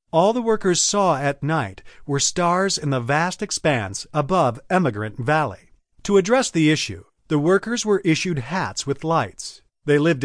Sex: male